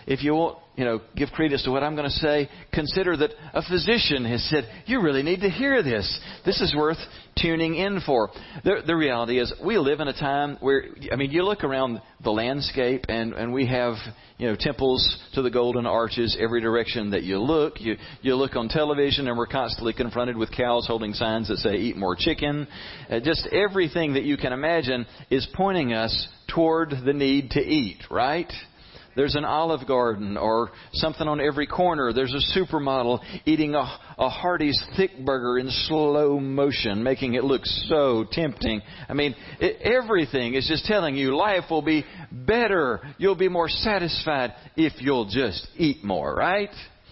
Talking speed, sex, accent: 185 wpm, male, American